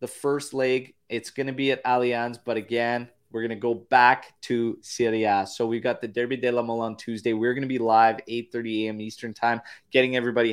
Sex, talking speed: male, 220 wpm